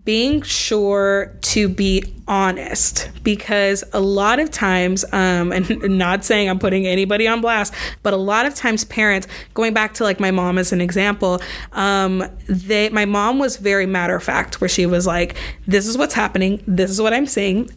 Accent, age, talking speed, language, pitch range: American, 20-39, 190 wpm, English, 190-230 Hz